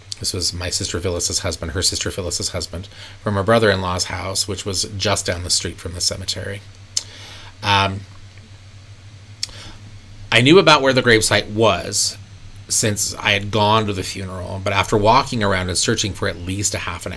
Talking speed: 175 wpm